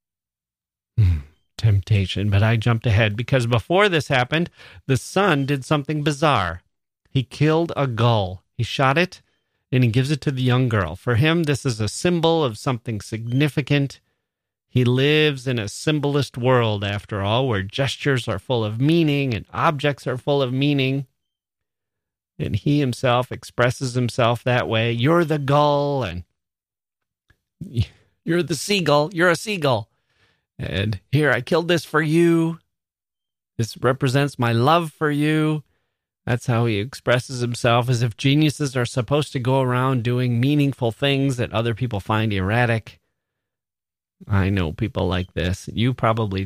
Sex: male